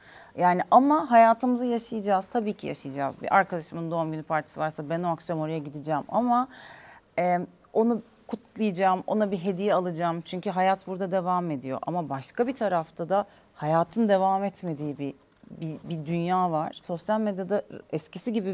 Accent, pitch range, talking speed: native, 170-225 Hz, 155 wpm